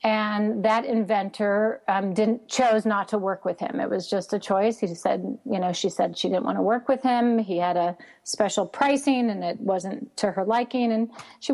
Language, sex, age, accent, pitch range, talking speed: English, female, 40-59, American, 195-245 Hz, 220 wpm